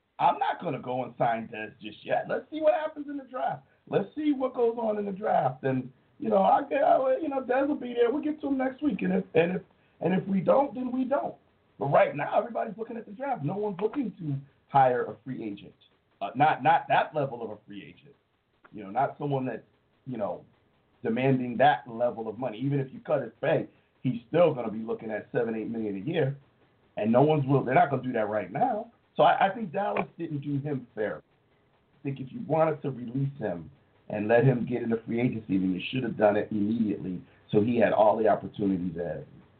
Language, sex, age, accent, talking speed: English, male, 40-59, American, 235 wpm